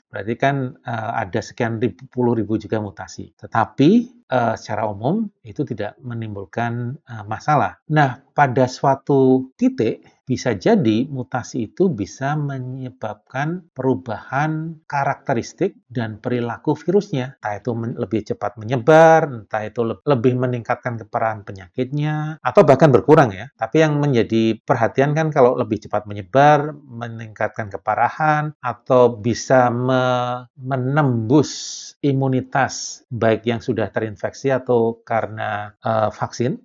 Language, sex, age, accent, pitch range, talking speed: Indonesian, male, 40-59, native, 110-140 Hz, 125 wpm